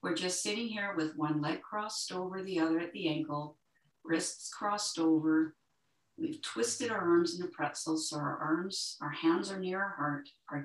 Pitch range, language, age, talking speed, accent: 155-240 Hz, English, 50-69, 190 wpm, American